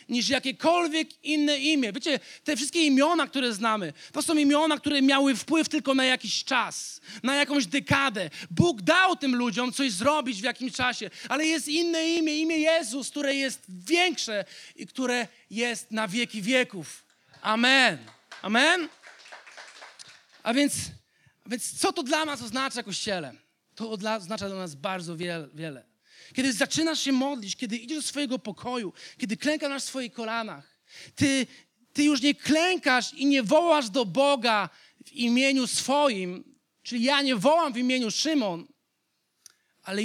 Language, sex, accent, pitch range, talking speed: Polish, male, native, 220-285 Hz, 150 wpm